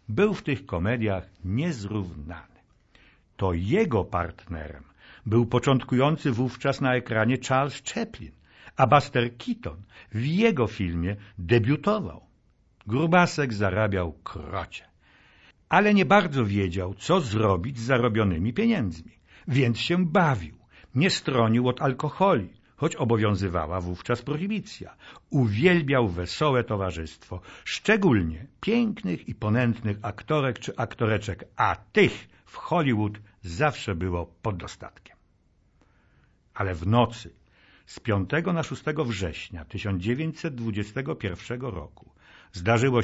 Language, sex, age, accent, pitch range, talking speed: Polish, male, 60-79, native, 95-135 Hz, 105 wpm